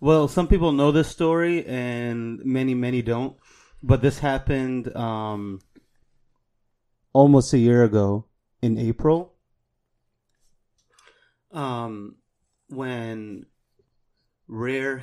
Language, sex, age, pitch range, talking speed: English, male, 30-49, 110-130 Hz, 90 wpm